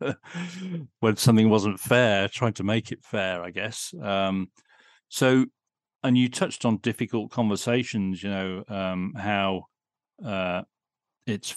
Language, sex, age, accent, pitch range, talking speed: English, male, 40-59, British, 95-120 Hz, 130 wpm